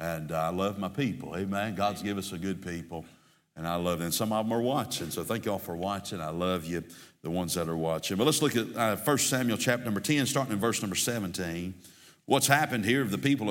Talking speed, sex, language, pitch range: 250 wpm, male, English, 100-140 Hz